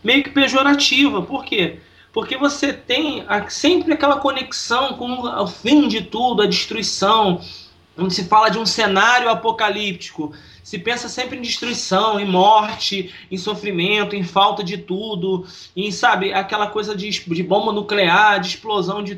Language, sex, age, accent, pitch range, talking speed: Portuguese, male, 20-39, Brazilian, 190-275 Hz, 155 wpm